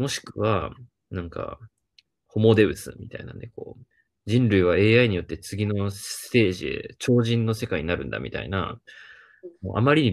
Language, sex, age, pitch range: Japanese, male, 20-39, 100-125 Hz